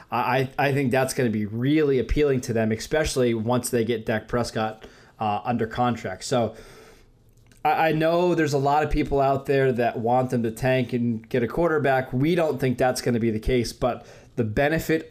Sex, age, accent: male, 20-39, American